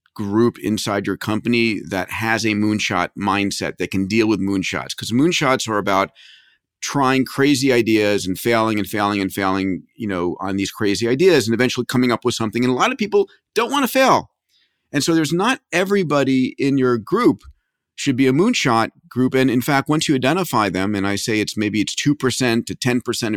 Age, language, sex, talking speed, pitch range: 40-59, English, male, 200 wpm, 100-130 Hz